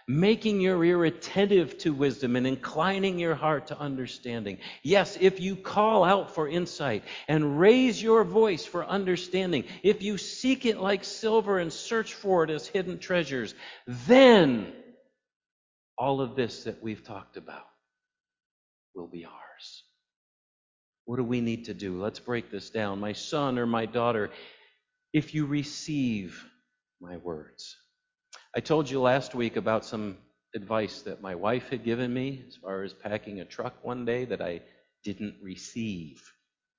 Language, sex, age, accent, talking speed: English, male, 50-69, American, 155 wpm